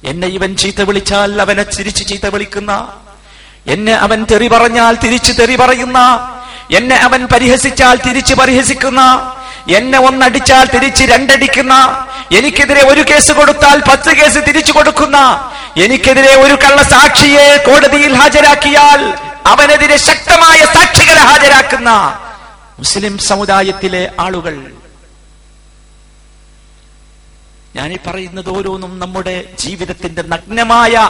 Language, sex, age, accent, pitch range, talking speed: Malayalam, male, 50-69, native, 205-285 Hz, 95 wpm